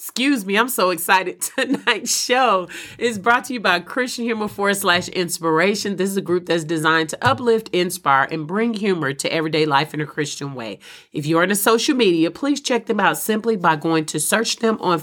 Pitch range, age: 165-225 Hz, 40-59